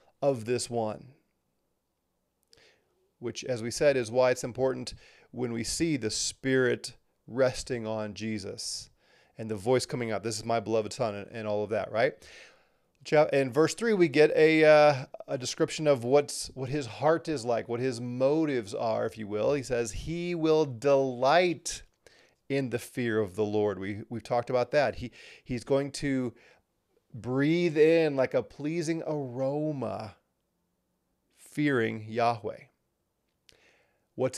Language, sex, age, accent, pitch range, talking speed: English, male, 30-49, American, 115-150 Hz, 150 wpm